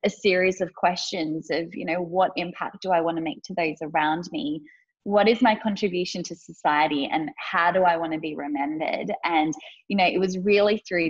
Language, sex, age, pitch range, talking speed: English, female, 20-39, 165-205 Hz, 210 wpm